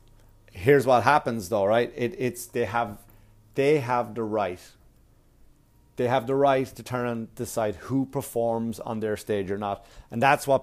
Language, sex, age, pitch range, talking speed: English, male, 30-49, 110-140 Hz, 175 wpm